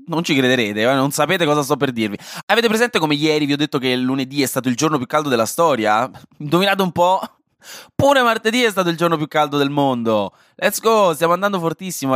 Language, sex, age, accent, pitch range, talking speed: Italian, male, 20-39, native, 115-165 Hz, 220 wpm